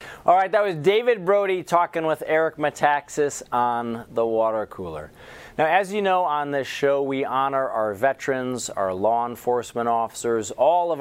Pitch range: 100-130 Hz